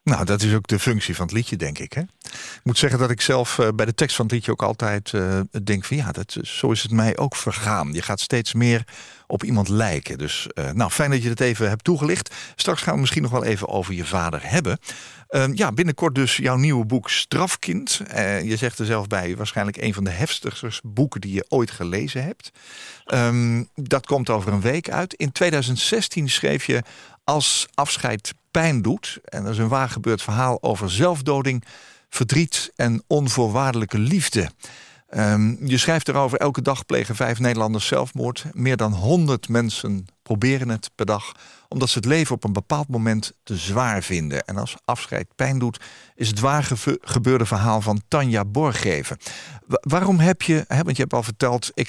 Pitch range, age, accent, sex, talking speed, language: 110-135 Hz, 50-69, Dutch, male, 195 wpm, Dutch